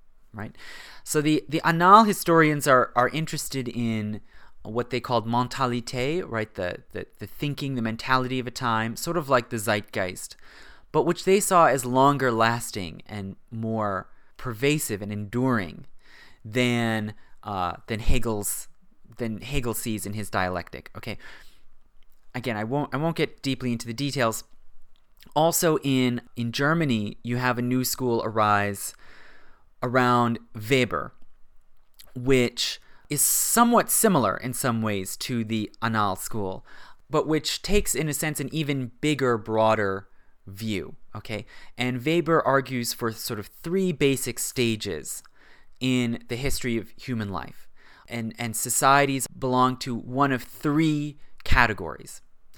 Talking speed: 140 wpm